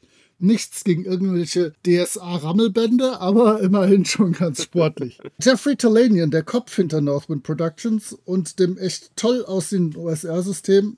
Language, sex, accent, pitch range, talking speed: German, male, German, 160-205 Hz, 120 wpm